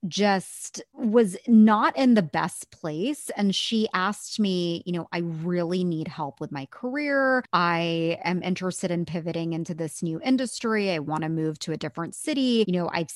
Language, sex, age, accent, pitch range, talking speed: English, female, 20-39, American, 170-210 Hz, 180 wpm